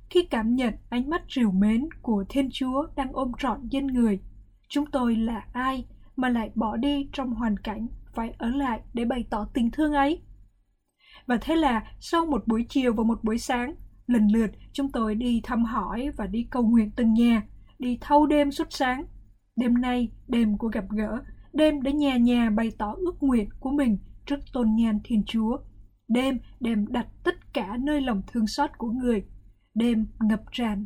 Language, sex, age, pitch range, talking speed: Vietnamese, female, 20-39, 220-270 Hz, 195 wpm